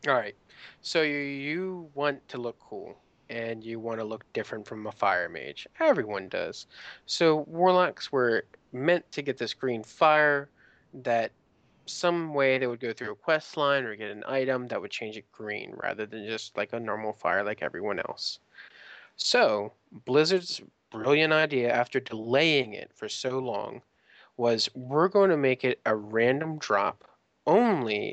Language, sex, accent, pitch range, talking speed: English, male, American, 120-160 Hz, 170 wpm